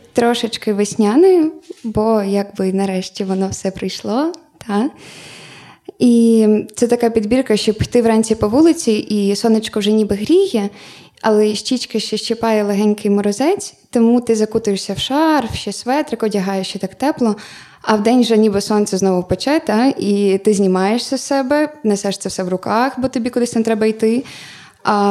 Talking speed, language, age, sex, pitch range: 155 wpm, Ukrainian, 20-39, female, 205-240 Hz